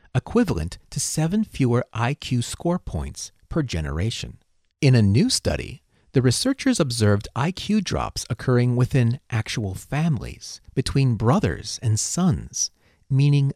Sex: male